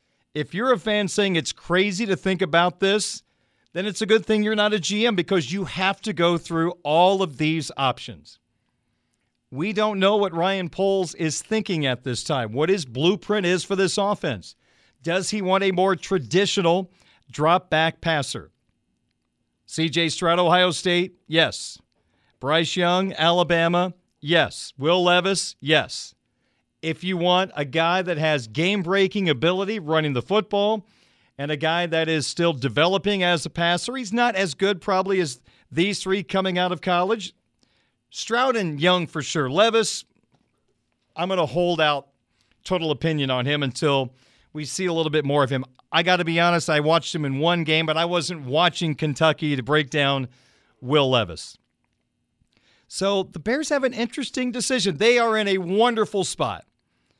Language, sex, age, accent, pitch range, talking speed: English, male, 40-59, American, 155-195 Hz, 170 wpm